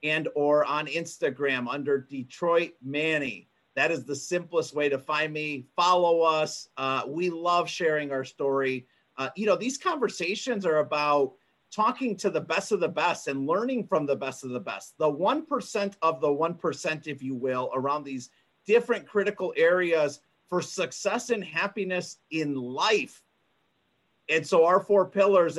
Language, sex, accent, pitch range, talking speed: English, male, American, 155-215 Hz, 160 wpm